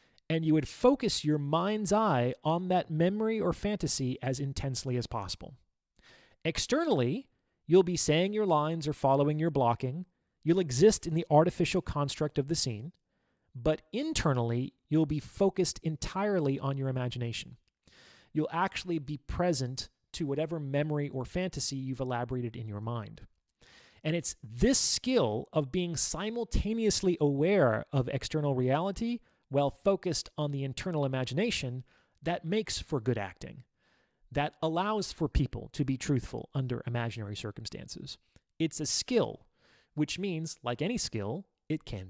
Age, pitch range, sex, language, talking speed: 30-49, 130-185 Hz, male, English, 145 wpm